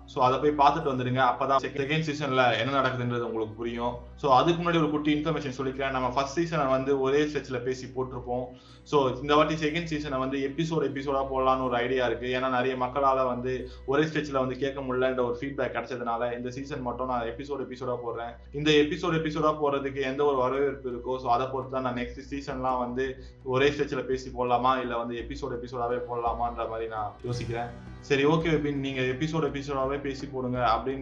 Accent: native